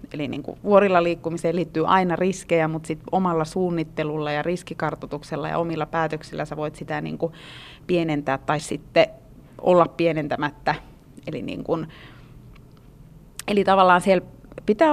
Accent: native